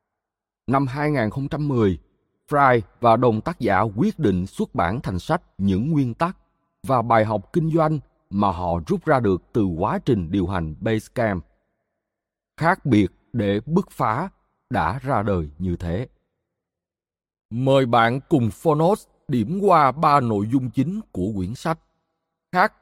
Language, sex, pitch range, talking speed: Vietnamese, male, 100-155 Hz, 145 wpm